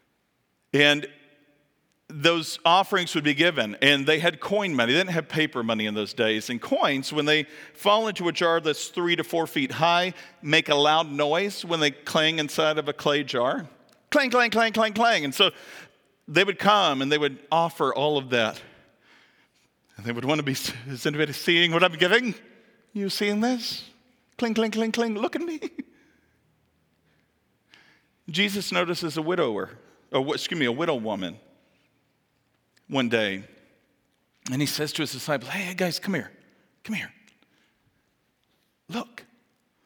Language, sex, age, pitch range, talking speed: English, male, 40-59, 145-185 Hz, 165 wpm